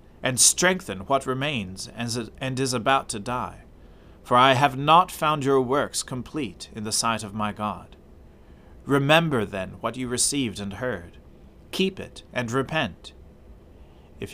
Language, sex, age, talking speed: English, male, 40-59, 145 wpm